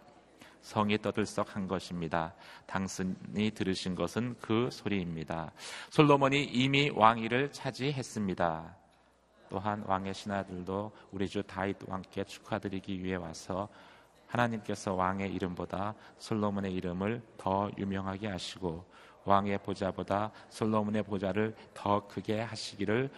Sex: male